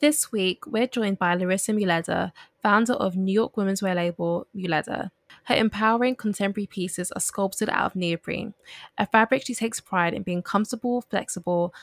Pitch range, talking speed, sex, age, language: 180-215 Hz, 165 wpm, female, 10-29, English